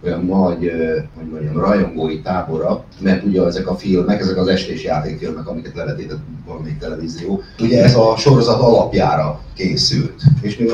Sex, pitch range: male, 80-105 Hz